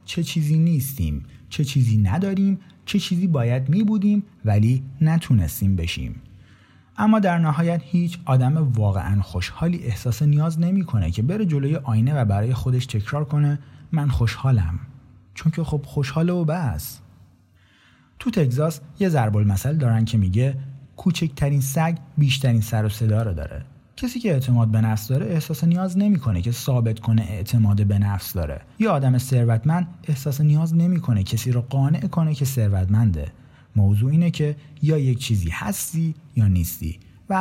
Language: Persian